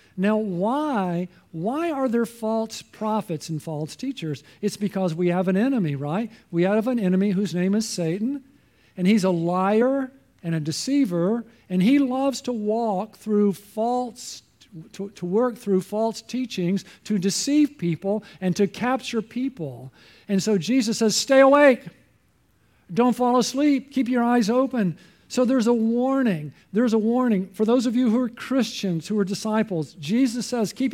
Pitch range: 185-245 Hz